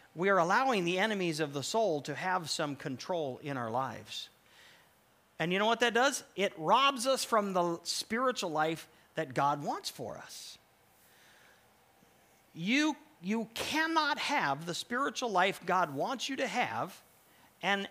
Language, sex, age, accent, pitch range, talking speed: English, male, 50-69, American, 150-200 Hz, 155 wpm